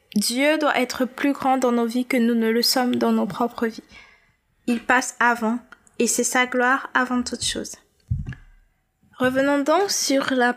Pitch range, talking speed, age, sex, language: 225-260 Hz, 175 wpm, 20-39, female, French